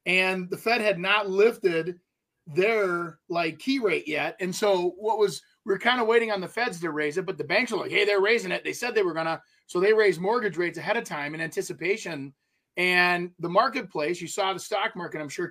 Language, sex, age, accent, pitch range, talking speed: English, male, 30-49, American, 165-210 Hz, 235 wpm